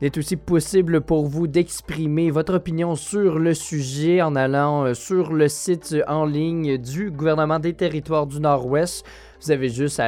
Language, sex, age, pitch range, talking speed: French, male, 20-39, 135-180 Hz, 175 wpm